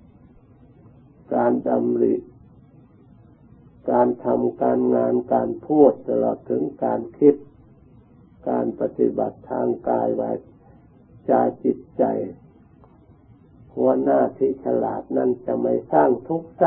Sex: male